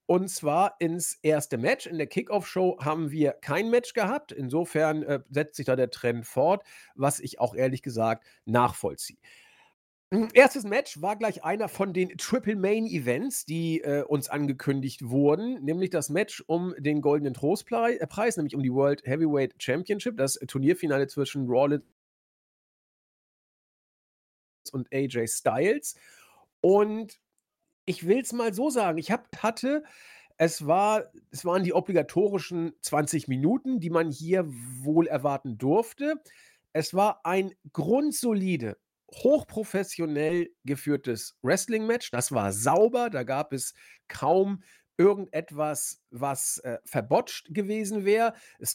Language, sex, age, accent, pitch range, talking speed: German, male, 40-59, German, 140-205 Hz, 130 wpm